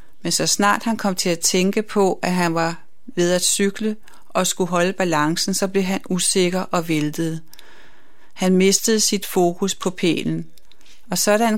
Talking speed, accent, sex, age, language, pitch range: 170 wpm, native, female, 30-49, Danish, 175-195 Hz